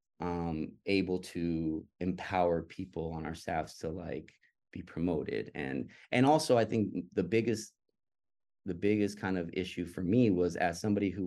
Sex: male